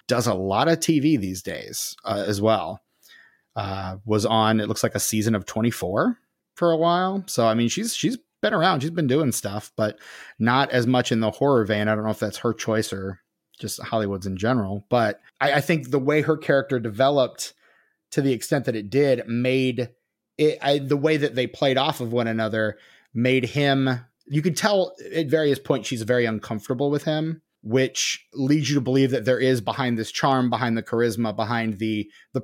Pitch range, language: 110-140 Hz, English